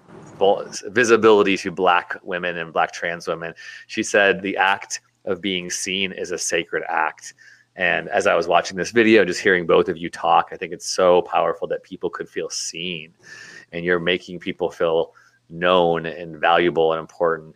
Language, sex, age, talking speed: English, male, 30-49, 180 wpm